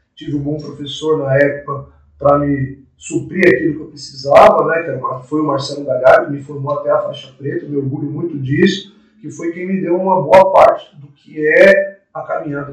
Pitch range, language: 140-175 Hz, Portuguese